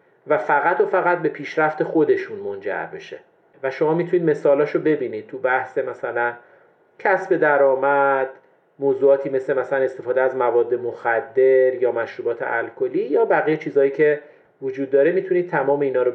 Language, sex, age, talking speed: Persian, male, 40-59, 145 wpm